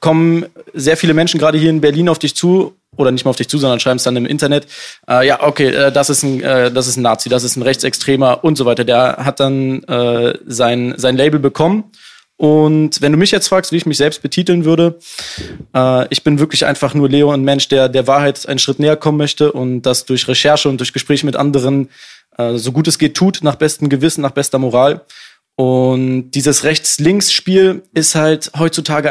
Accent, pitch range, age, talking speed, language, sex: German, 130-155 Hz, 20-39, 220 wpm, German, male